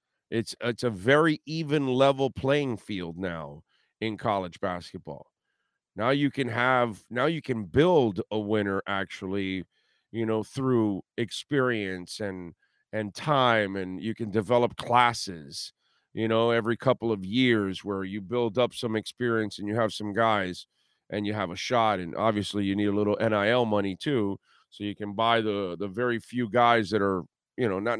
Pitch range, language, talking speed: 100-130 Hz, English, 170 wpm